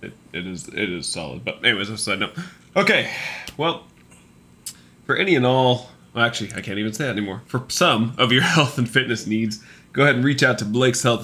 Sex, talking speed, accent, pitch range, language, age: male, 220 wpm, American, 105-135 Hz, English, 20-39